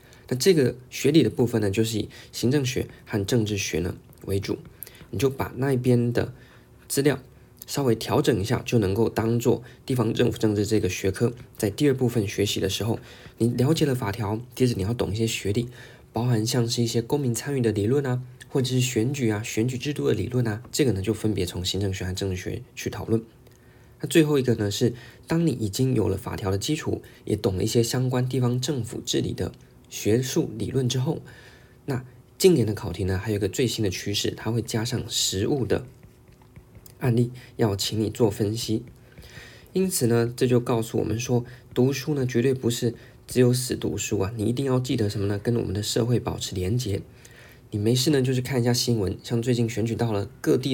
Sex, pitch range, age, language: male, 110-125 Hz, 20-39, Chinese